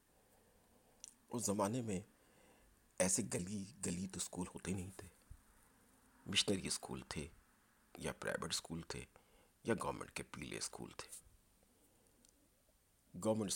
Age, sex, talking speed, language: 50-69, male, 110 wpm, Urdu